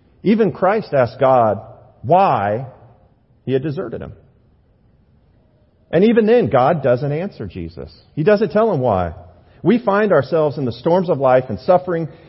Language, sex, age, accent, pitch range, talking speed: English, male, 40-59, American, 120-195 Hz, 150 wpm